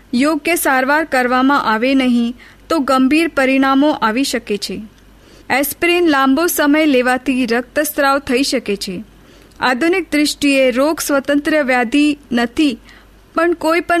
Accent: native